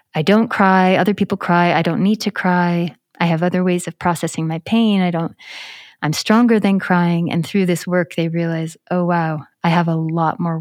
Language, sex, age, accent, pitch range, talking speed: English, female, 30-49, American, 170-195 Hz, 215 wpm